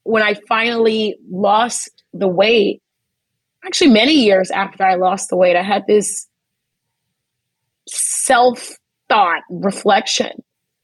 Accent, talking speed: American, 105 wpm